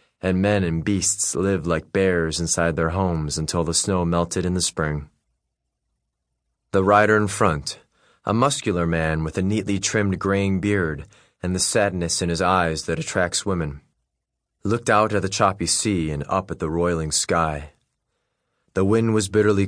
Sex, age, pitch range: male, 30-49, 80-105 Hz